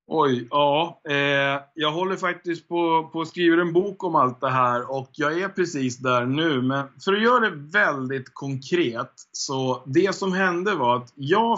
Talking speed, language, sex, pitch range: 180 wpm, Swedish, male, 120-160 Hz